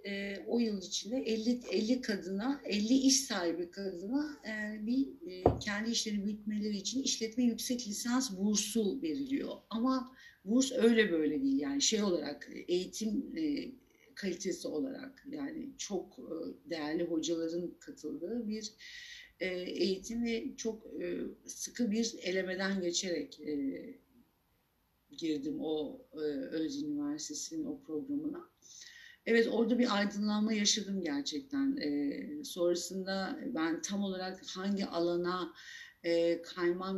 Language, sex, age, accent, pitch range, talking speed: Turkish, female, 60-79, native, 190-275 Hz, 120 wpm